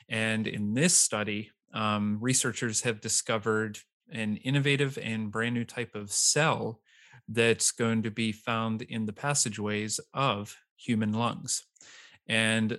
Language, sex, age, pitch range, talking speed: English, male, 30-49, 105-115 Hz, 130 wpm